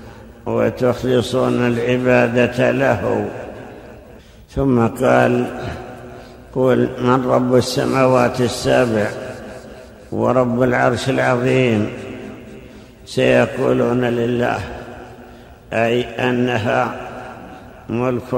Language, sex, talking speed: Arabic, male, 60 wpm